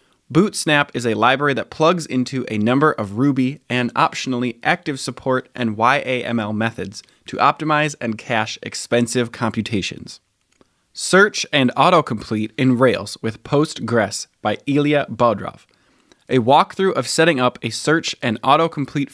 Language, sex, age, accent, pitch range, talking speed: English, male, 20-39, American, 115-145 Hz, 135 wpm